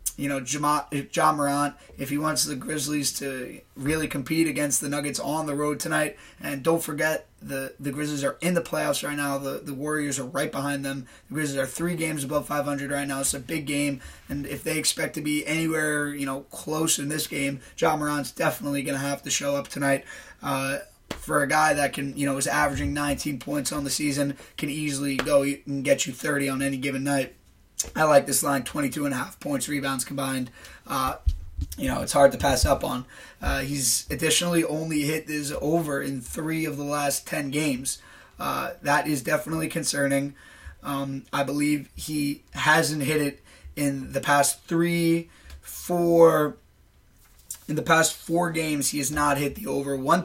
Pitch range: 140-155 Hz